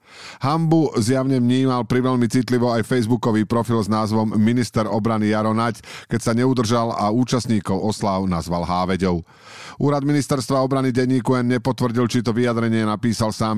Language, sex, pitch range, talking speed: Slovak, male, 100-130 Hz, 145 wpm